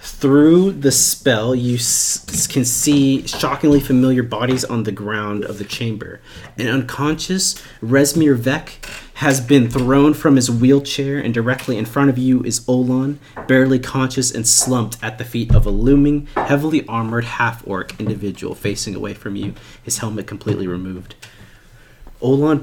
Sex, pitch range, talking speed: male, 100-130 Hz, 150 wpm